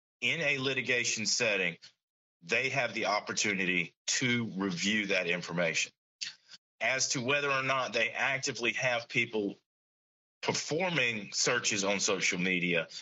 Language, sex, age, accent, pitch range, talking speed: English, male, 40-59, American, 95-135 Hz, 120 wpm